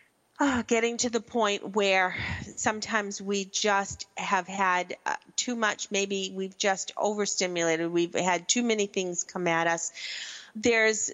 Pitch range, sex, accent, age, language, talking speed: 185-230 Hz, female, American, 40-59, English, 135 wpm